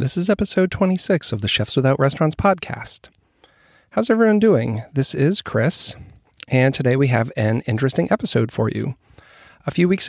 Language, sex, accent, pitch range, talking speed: English, male, American, 115-135 Hz, 165 wpm